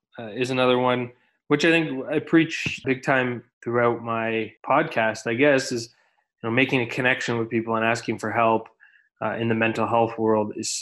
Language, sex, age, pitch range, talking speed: English, male, 20-39, 115-135 Hz, 195 wpm